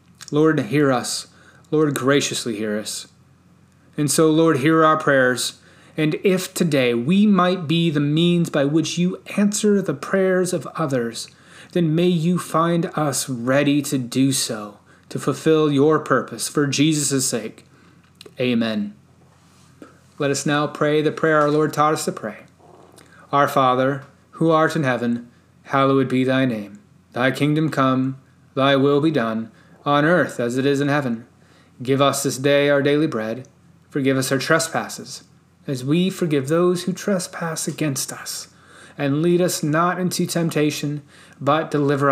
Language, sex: English, male